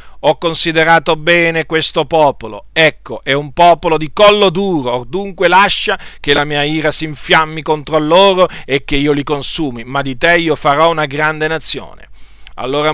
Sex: male